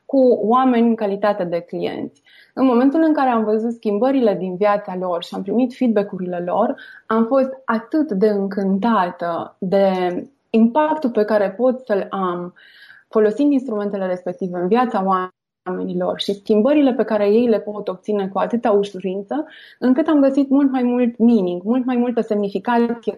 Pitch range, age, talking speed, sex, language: 190-240 Hz, 20-39, 160 wpm, female, Romanian